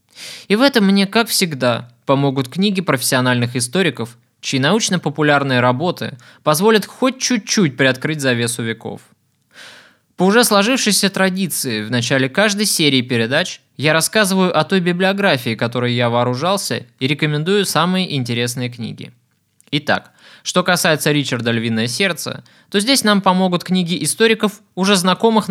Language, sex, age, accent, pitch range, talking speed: Russian, male, 20-39, native, 125-185 Hz, 130 wpm